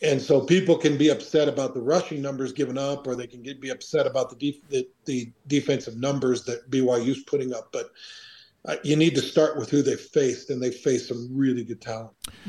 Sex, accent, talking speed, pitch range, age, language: male, American, 220 wpm, 130-155 Hz, 50-69, English